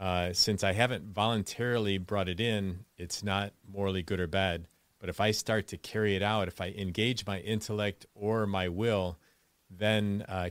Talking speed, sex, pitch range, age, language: 190 wpm, male, 95-110 Hz, 40-59, English